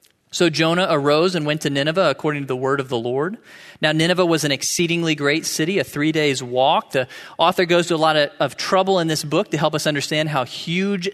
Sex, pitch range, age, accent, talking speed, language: male, 145-180 Hz, 40-59, American, 230 wpm, English